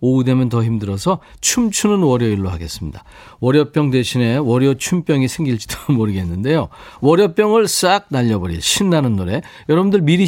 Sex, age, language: male, 40-59, Korean